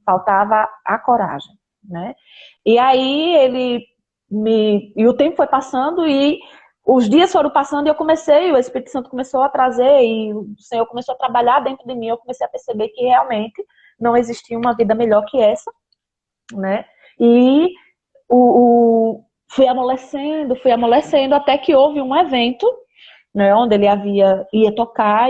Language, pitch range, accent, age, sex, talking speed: Portuguese, 215-265 Hz, Brazilian, 20-39, female, 160 wpm